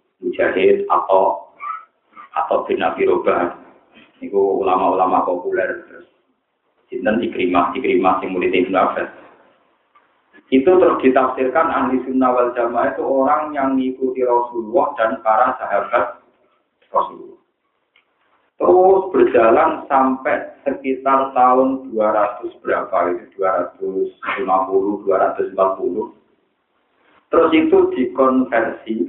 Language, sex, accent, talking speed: Indonesian, male, native, 85 wpm